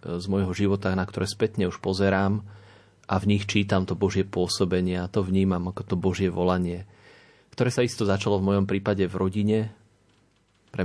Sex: male